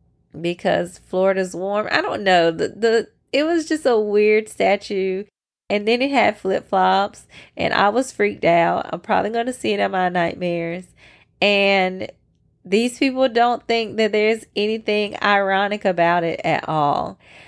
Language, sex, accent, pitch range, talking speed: English, female, American, 175-230 Hz, 160 wpm